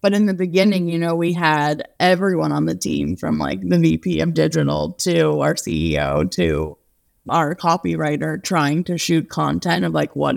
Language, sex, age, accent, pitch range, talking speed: English, female, 20-39, American, 115-180 Hz, 180 wpm